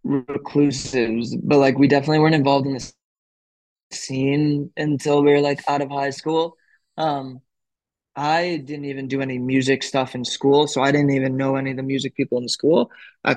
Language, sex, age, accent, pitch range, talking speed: English, male, 20-39, American, 135-145 Hz, 190 wpm